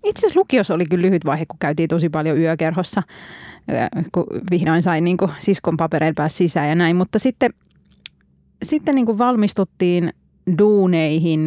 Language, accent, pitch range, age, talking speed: Finnish, native, 160-200 Hz, 20-39, 145 wpm